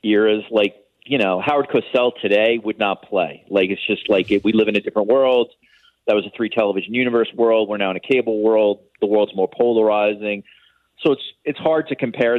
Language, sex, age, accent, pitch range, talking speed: English, male, 40-59, American, 105-130 Hz, 215 wpm